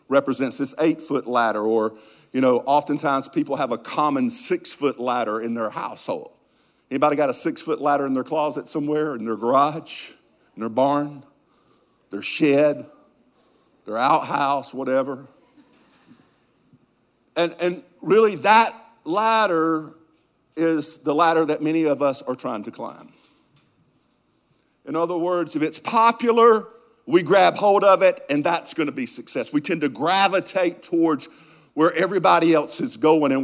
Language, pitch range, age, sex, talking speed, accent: English, 145-220 Hz, 50-69, male, 145 wpm, American